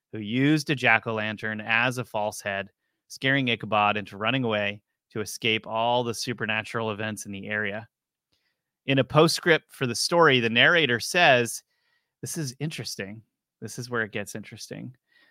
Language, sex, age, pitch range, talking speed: English, male, 30-49, 110-145 Hz, 155 wpm